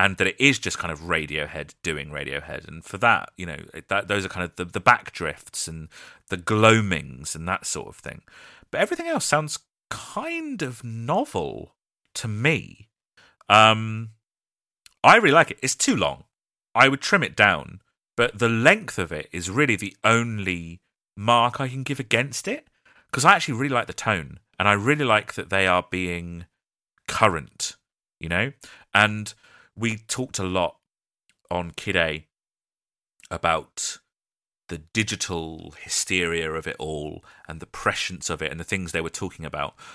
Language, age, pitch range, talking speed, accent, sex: English, 30-49, 80-115 Hz, 170 wpm, British, male